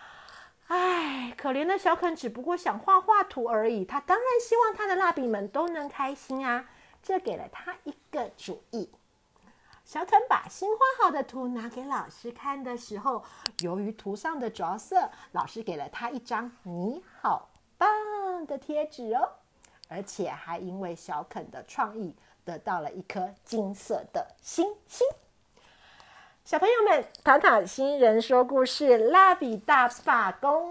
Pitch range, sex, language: 225-335 Hz, female, Chinese